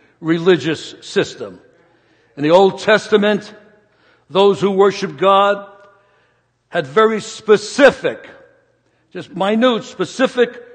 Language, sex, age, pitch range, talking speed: English, male, 60-79, 195-260 Hz, 90 wpm